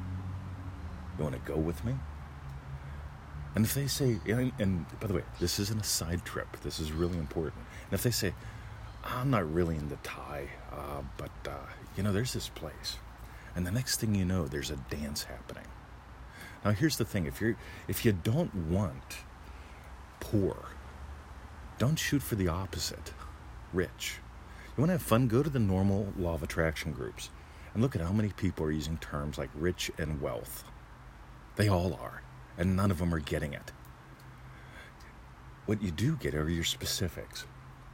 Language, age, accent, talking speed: English, 40-59, American, 175 wpm